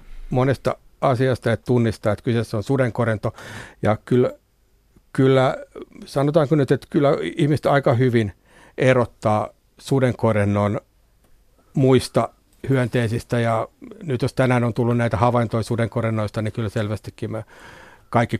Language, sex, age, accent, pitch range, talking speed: Finnish, male, 60-79, native, 110-125 Hz, 115 wpm